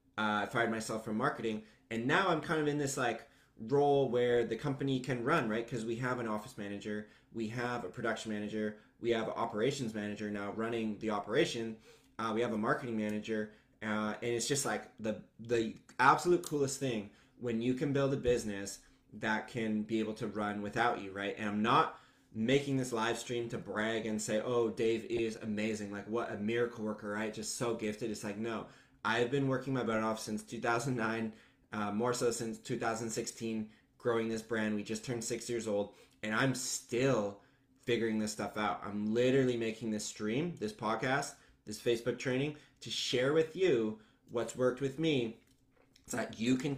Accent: American